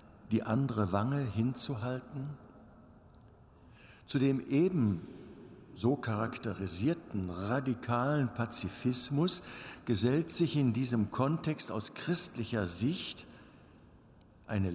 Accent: German